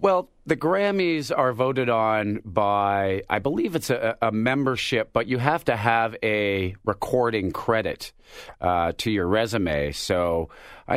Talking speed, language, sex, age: 150 wpm, English, male, 40-59